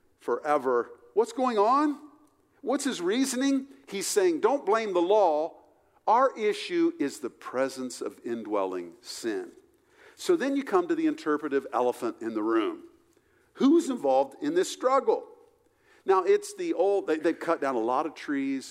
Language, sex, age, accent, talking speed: English, male, 50-69, American, 155 wpm